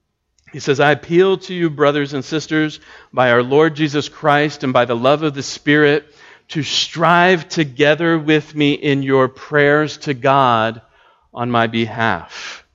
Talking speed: 160 wpm